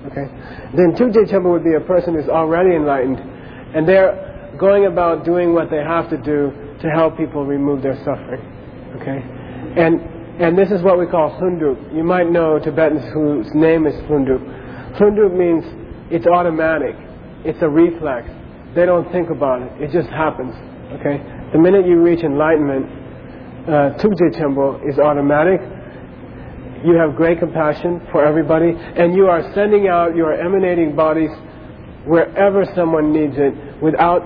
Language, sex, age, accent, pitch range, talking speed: English, male, 40-59, American, 145-175 Hz, 160 wpm